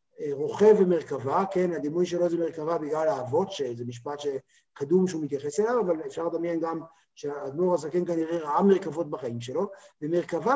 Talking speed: 155 wpm